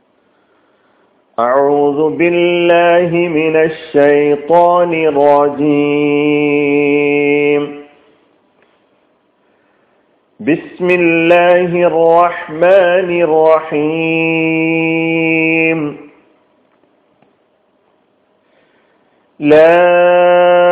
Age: 40-59